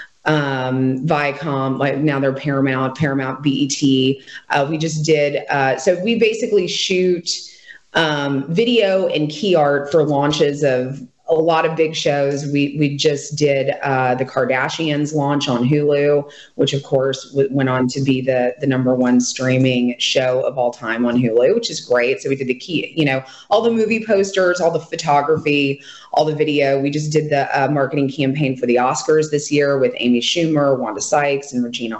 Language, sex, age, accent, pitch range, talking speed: English, female, 30-49, American, 135-160 Hz, 180 wpm